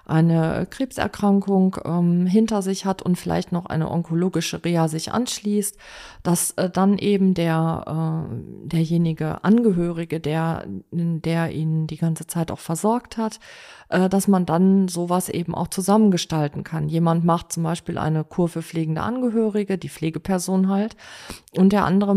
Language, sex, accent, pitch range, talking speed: German, female, German, 165-195 Hz, 150 wpm